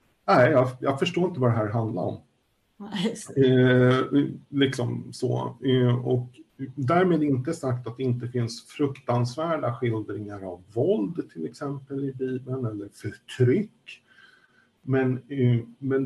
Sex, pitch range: male, 115-140 Hz